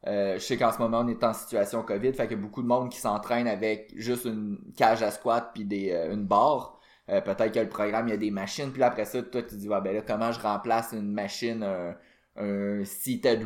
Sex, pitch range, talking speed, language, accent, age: male, 110-130 Hz, 260 wpm, French, Canadian, 20-39